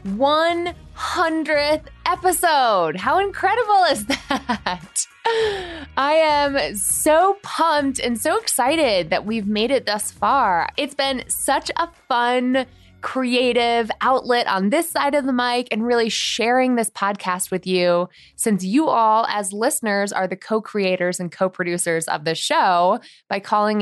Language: English